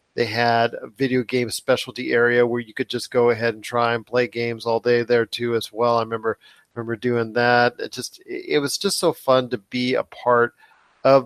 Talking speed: 225 wpm